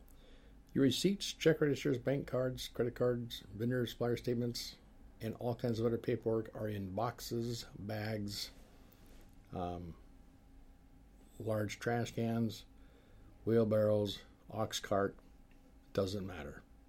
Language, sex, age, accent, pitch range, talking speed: English, male, 50-69, American, 100-115 Hz, 105 wpm